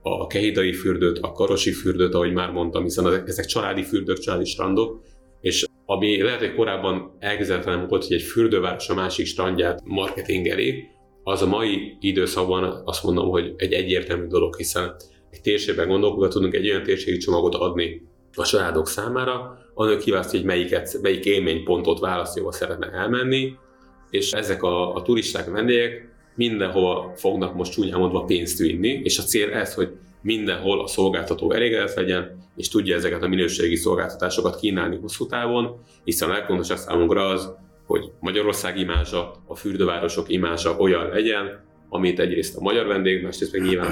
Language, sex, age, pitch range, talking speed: Hungarian, male, 30-49, 90-125 Hz, 155 wpm